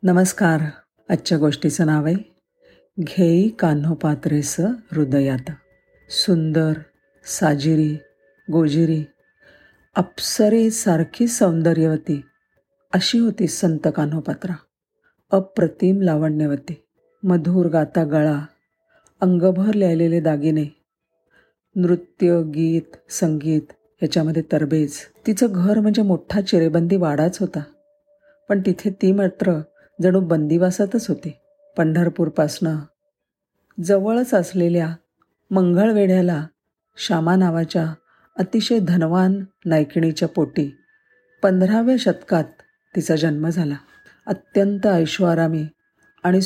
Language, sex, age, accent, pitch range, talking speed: Marathi, female, 50-69, native, 155-195 Hz, 85 wpm